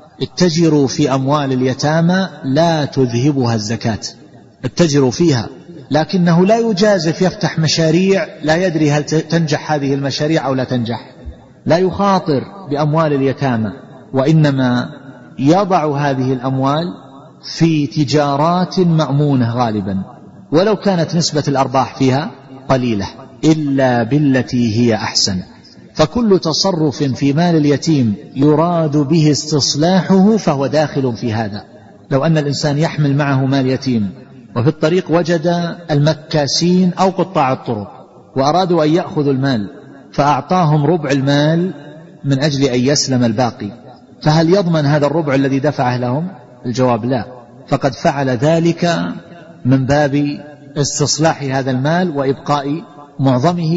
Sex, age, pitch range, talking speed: male, 40-59, 135-165 Hz, 115 wpm